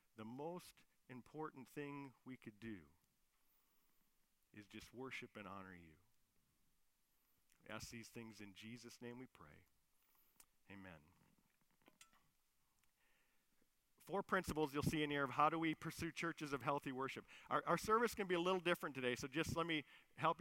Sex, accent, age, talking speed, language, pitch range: male, American, 50-69, 155 wpm, English, 115-155 Hz